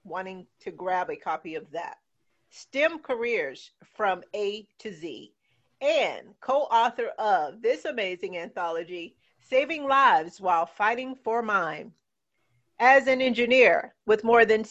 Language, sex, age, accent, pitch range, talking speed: English, female, 50-69, American, 190-265 Hz, 125 wpm